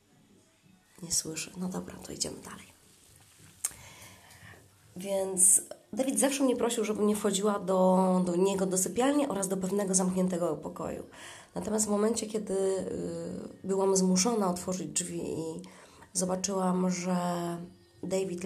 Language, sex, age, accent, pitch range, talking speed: Polish, female, 20-39, native, 175-195 Hz, 120 wpm